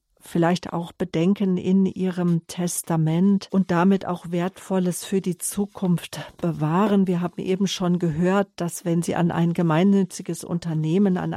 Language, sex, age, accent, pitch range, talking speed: German, female, 50-69, German, 165-190 Hz, 145 wpm